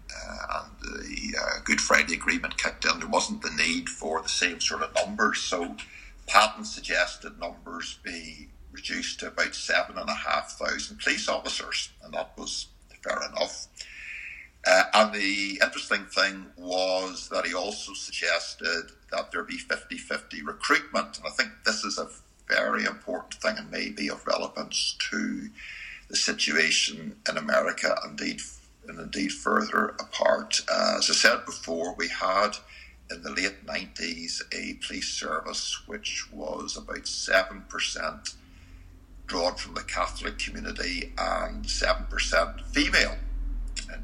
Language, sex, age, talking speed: English, male, 60-79, 135 wpm